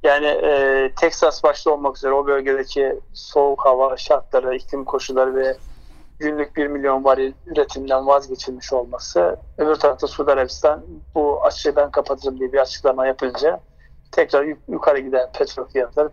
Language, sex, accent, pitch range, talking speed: Turkish, male, native, 135-155 Hz, 140 wpm